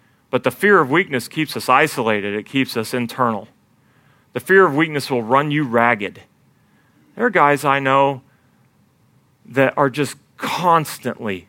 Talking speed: 150 wpm